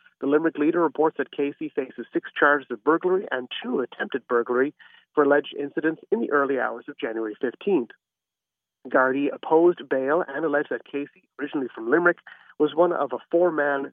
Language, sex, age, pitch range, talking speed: English, male, 40-59, 140-180 Hz, 170 wpm